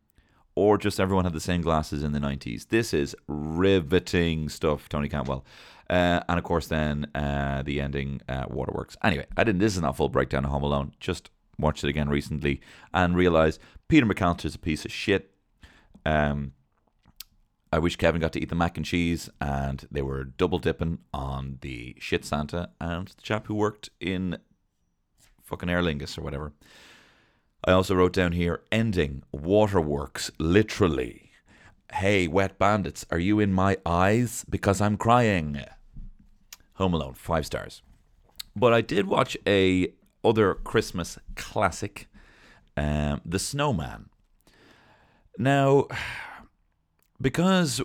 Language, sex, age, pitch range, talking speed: English, male, 30-49, 75-95 Hz, 150 wpm